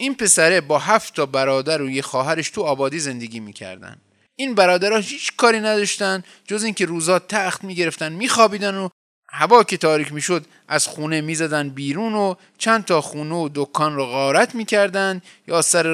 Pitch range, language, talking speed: 135-205 Hz, Persian, 160 wpm